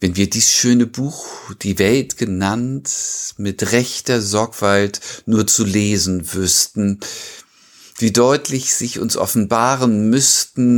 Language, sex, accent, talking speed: German, male, German, 115 wpm